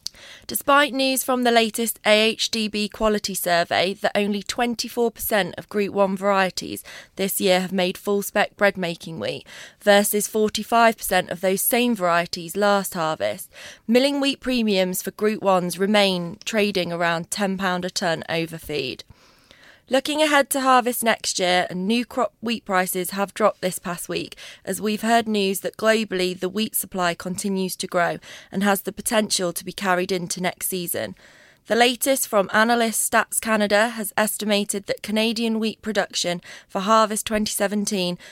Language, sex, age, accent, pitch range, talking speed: English, female, 20-39, British, 185-220 Hz, 150 wpm